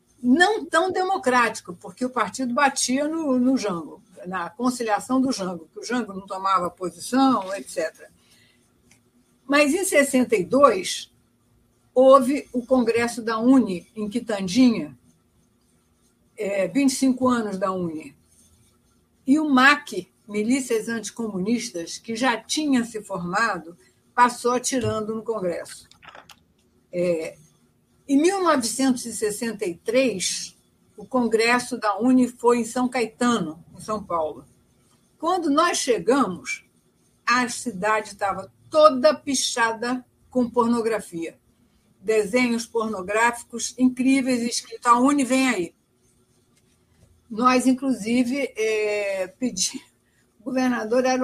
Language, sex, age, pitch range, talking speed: Portuguese, female, 60-79, 200-260 Hz, 105 wpm